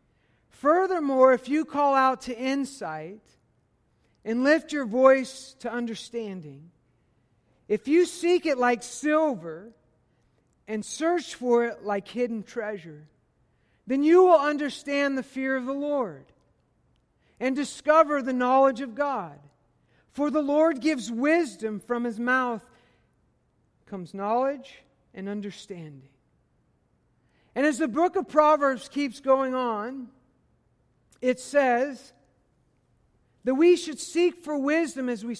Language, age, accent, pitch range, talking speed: English, 50-69, American, 215-295 Hz, 120 wpm